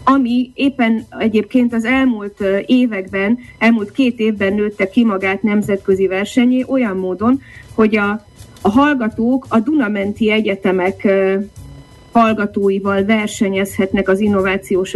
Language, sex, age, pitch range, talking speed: Hungarian, female, 30-49, 195-235 Hz, 110 wpm